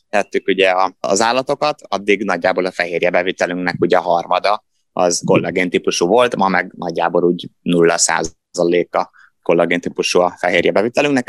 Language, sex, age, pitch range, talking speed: Hungarian, male, 20-39, 85-115 Hz, 130 wpm